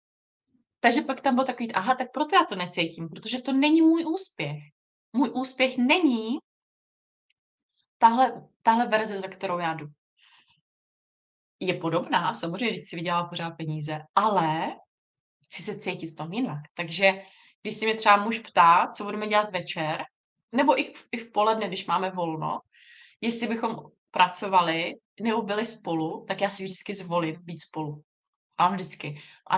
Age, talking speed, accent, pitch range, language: 20-39, 150 wpm, native, 175-240 Hz, Czech